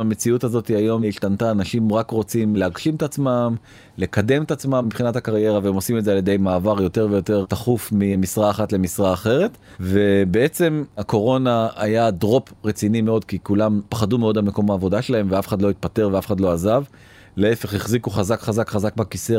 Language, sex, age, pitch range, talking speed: Hebrew, male, 30-49, 100-125 Hz, 175 wpm